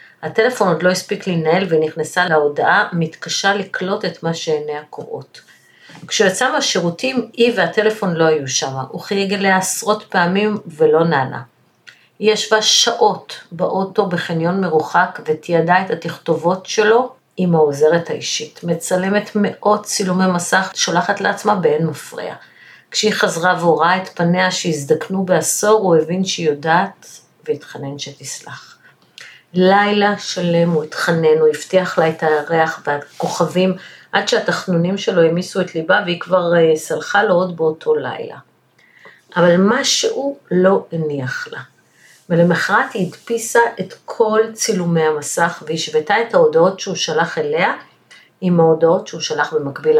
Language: Hebrew